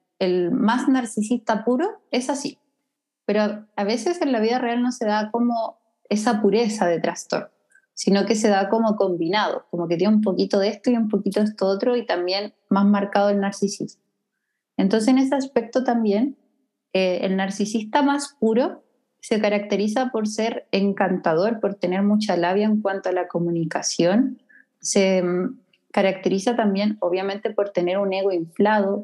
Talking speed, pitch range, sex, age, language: 165 wpm, 195-235 Hz, female, 20-39, Spanish